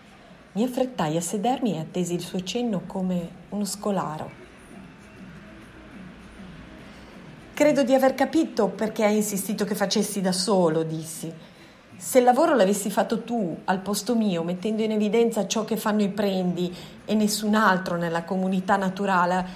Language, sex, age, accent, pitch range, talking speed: Italian, female, 40-59, native, 175-220 Hz, 145 wpm